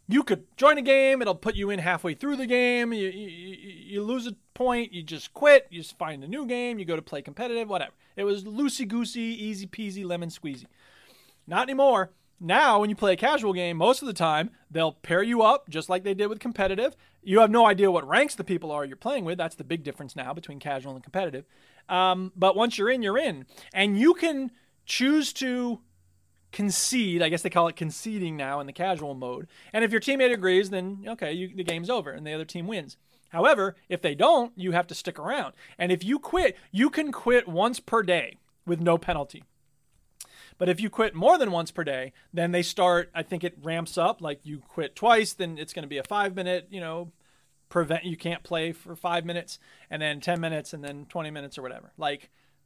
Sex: male